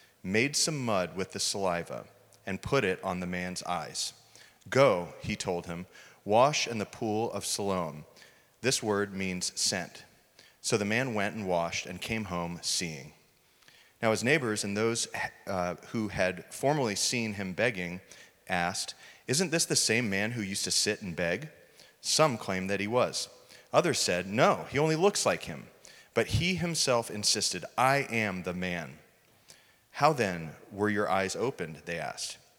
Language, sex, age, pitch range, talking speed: English, male, 30-49, 95-120 Hz, 165 wpm